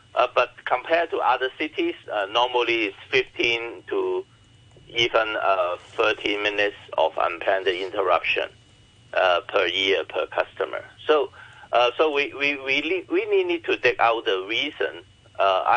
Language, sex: English, male